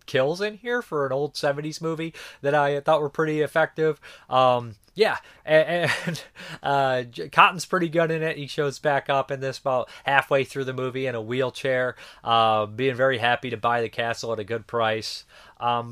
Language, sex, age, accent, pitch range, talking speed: English, male, 30-49, American, 115-150 Hz, 190 wpm